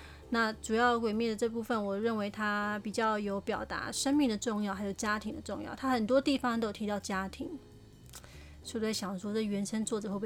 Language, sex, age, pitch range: Chinese, female, 20-39, 200-245 Hz